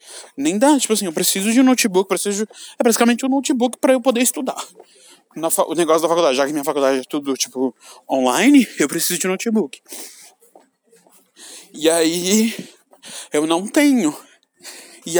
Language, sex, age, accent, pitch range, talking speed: Portuguese, male, 20-39, Brazilian, 155-235 Hz, 160 wpm